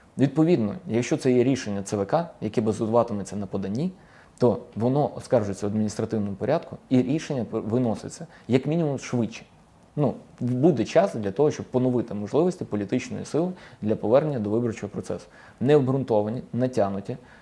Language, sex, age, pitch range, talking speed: Ukrainian, male, 20-39, 105-135 Hz, 135 wpm